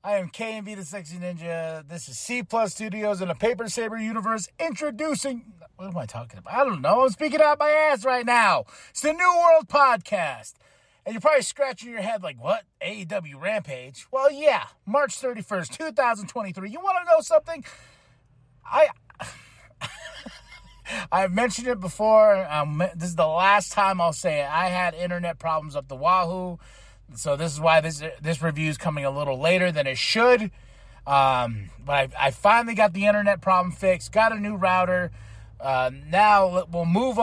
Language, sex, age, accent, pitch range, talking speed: English, male, 30-49, American, 155-220 Hz, 180 wpm